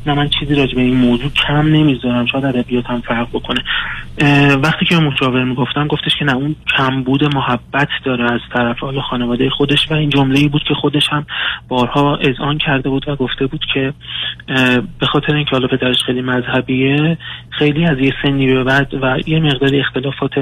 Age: 20-39